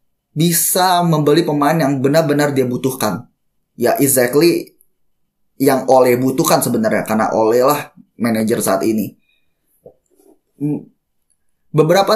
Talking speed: 100 wpm